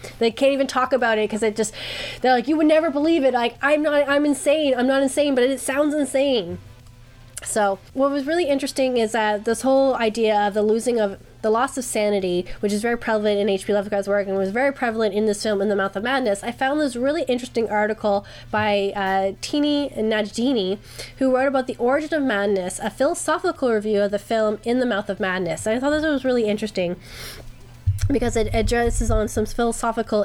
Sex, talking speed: female, 210 wpm